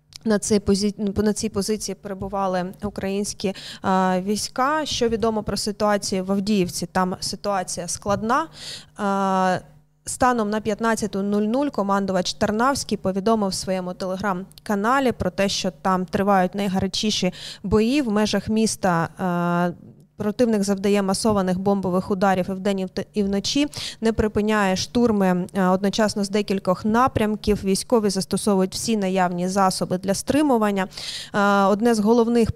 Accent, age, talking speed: native, 20-39, 110 wpm